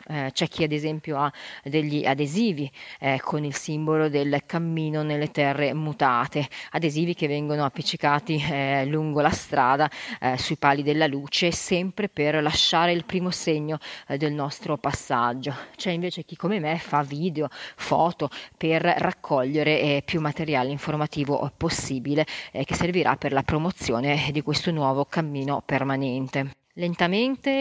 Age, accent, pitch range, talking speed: 30-49, native, 145-170 Hz, 145 wpm